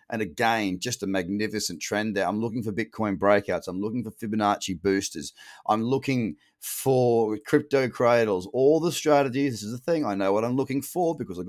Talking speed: 195 wpm